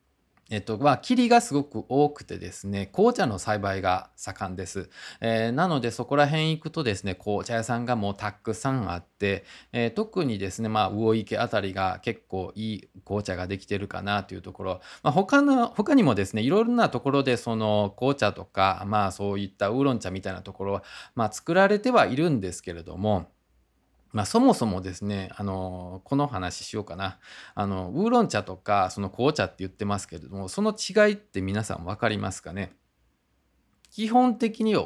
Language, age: Japanese, 20-39